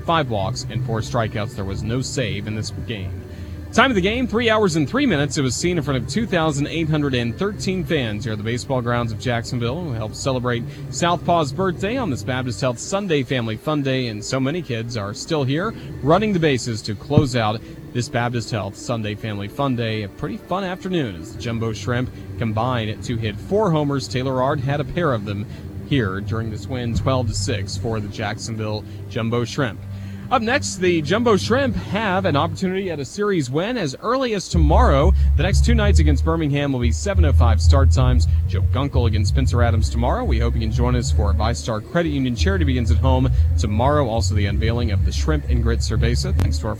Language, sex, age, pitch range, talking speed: English, male, 30-49, 80-130 Hz, 205 wpm